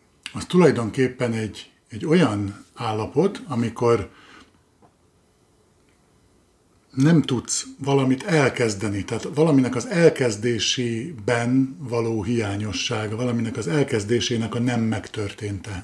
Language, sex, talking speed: Hungarian, male, 85 wpm